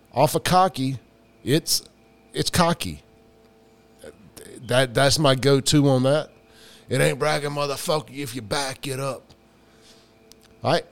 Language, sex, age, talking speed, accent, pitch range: English, male, 30-49, 120 wpm, American, 110-140 Hz